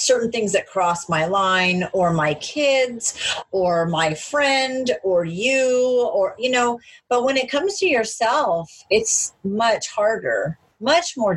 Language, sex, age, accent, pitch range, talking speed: English, female, 40-59, American, 180-265 Hz, 150 wpm